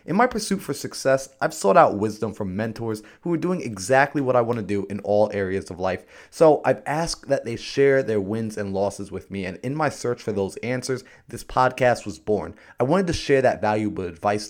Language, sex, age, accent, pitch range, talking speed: English, male, 30-49, American, 100-125 Hz, 230 wpm